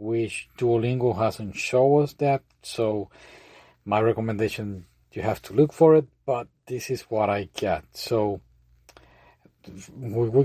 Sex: male